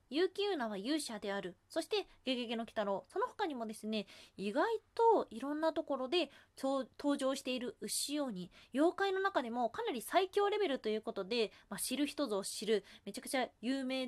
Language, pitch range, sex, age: Japanese, 215-335 Hz, female, 20-39